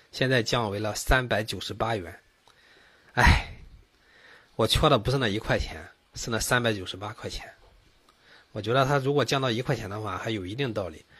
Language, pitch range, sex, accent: Chinese, 105-140 Hz, male, native